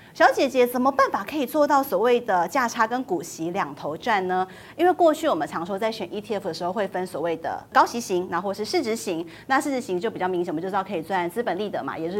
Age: 30-49